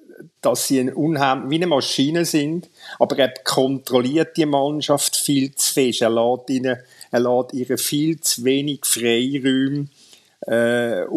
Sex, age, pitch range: male, 50-69, 120-150 Hz